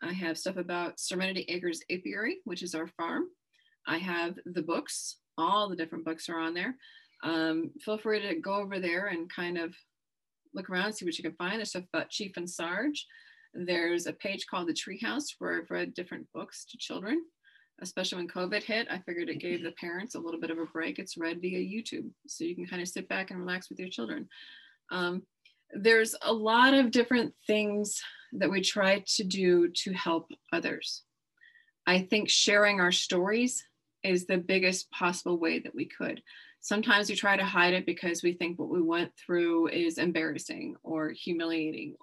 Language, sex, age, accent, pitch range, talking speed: English, female, 30-49, American, 170-220 Hz, 195 wpm